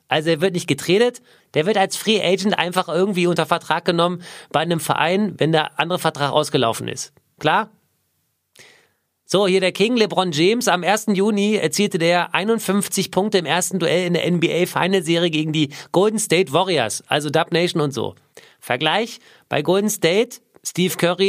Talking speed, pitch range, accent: 170 wpm, 165-200 Hz, German